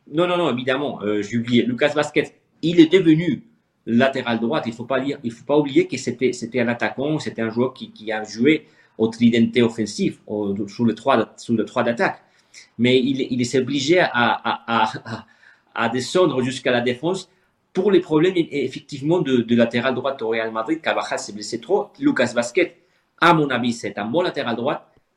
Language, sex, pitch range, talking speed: French, male, 110-140 Hz, 185 wpm